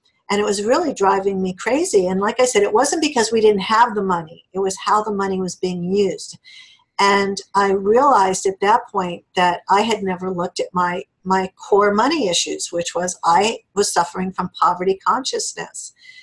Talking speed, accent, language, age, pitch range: 190 wpm, American, English, 50-69, 185-235 Hz